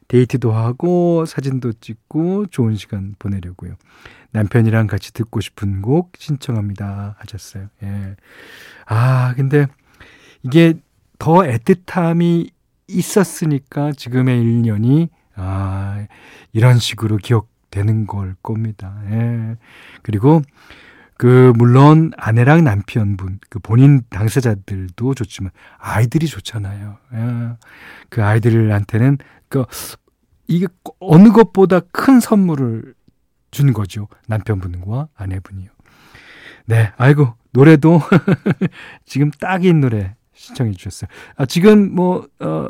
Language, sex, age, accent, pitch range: Korean, male, 40-59, native, 105-150 Hz